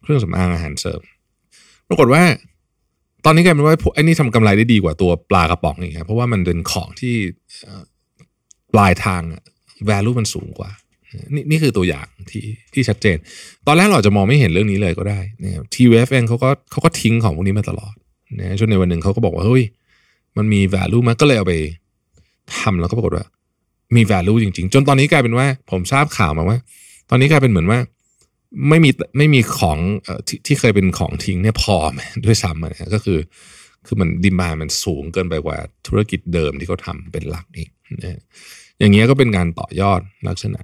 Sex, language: male, Thai